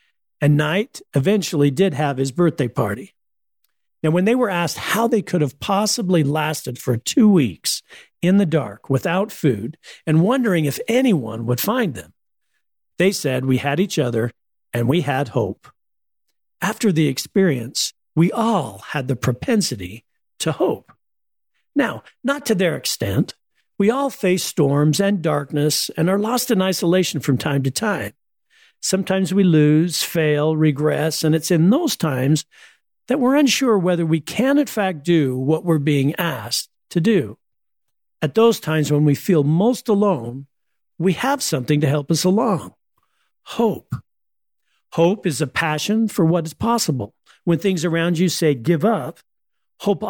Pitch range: 150-205 Hz